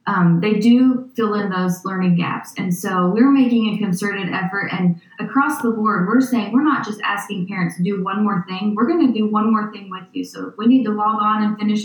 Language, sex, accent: English, female, American